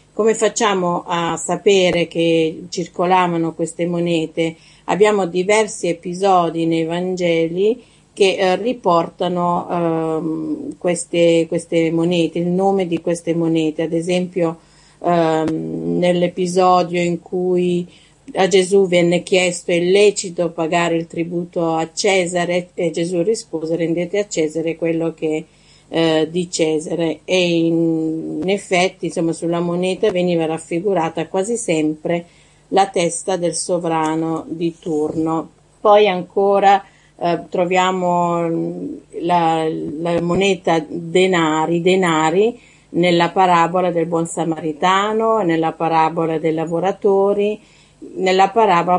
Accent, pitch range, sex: native, 165-185 Hz, female